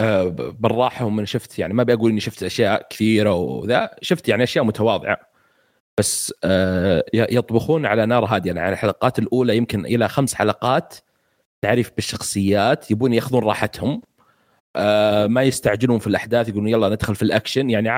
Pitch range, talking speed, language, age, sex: 105-120 Hz, 145 wpm, Arabic, 30-49, male